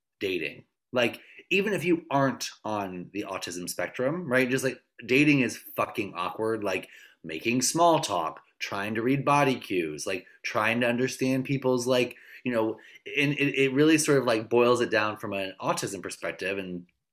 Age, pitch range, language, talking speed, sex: 20-39, 100-135 Hz, English, 170 wpm, male